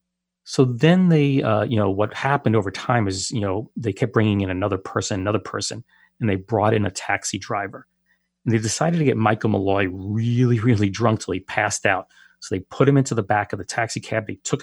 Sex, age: male, 40-59